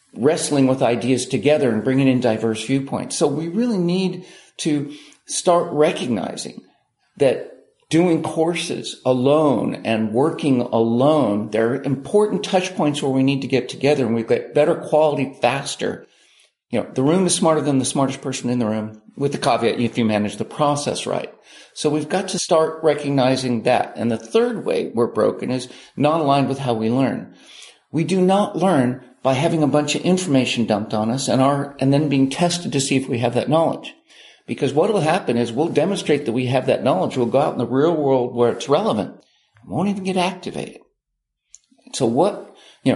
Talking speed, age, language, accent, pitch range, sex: 190 wpm, 50-69, English, American, 125-165 Hz, male